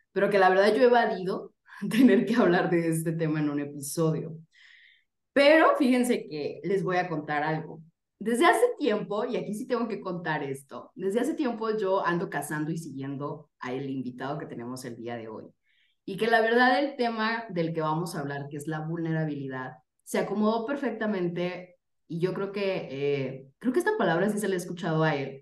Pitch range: 155-210 Hz